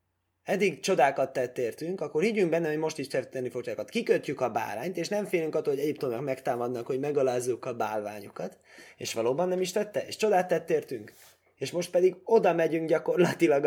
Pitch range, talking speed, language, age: 125-175 Hz, 185 wpm, Hungarian, 20-39